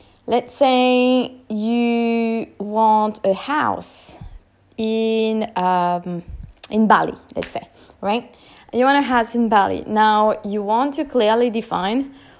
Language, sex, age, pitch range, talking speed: English, female, 20-39, 200-255 Hz, 120 wpm